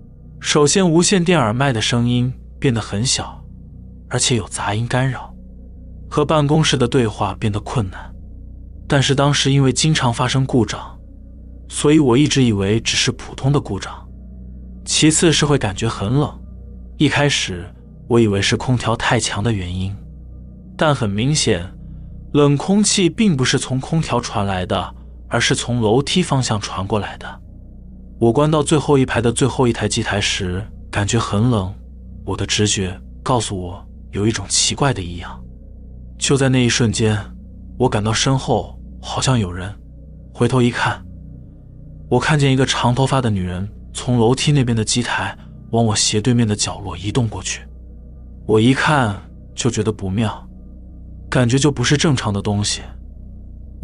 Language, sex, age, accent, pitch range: Chinese, male, 20-39, native, 90-130 Hz